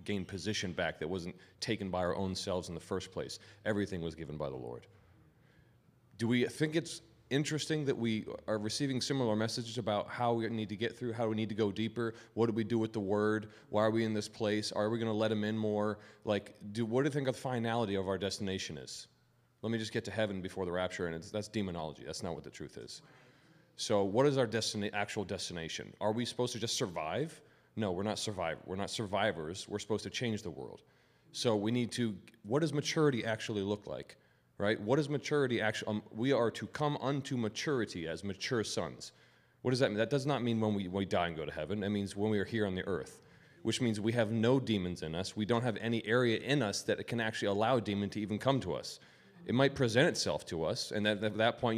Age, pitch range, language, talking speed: 30-49, 100-120 Hz, English, 245 wpm